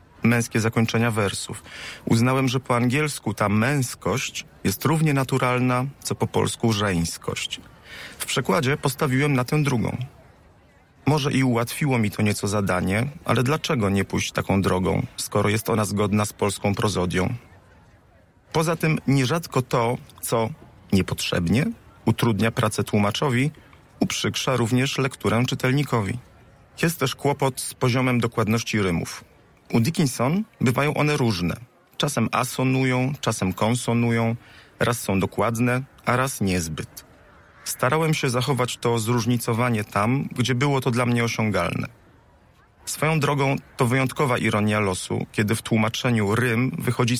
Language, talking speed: Polish, 125 wpm